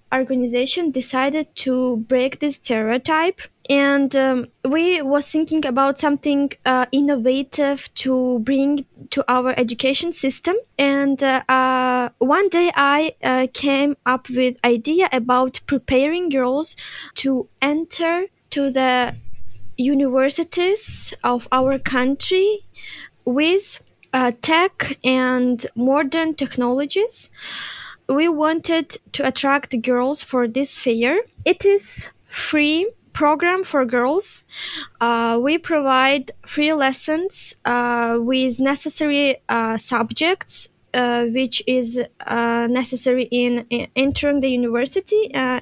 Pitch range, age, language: 255-310 Hz, 20-39, English